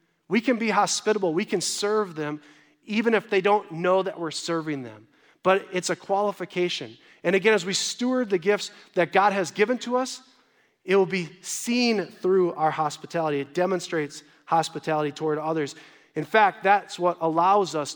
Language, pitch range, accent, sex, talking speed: English, 155-195 Hz, American, male, 175 wpm